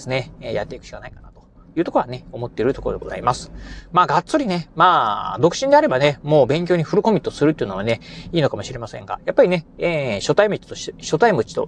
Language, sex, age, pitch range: Japanese, male, 30-49, 140-235 Hz